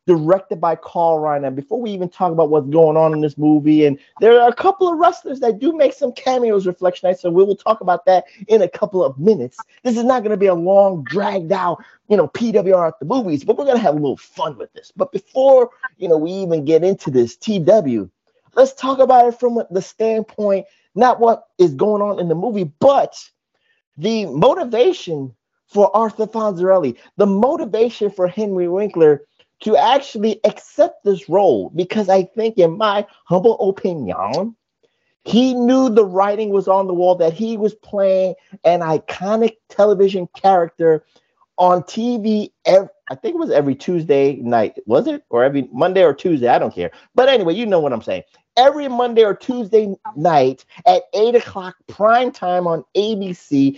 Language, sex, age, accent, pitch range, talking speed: English, male, 30-49, American, 180-240 Hz, 185 wpm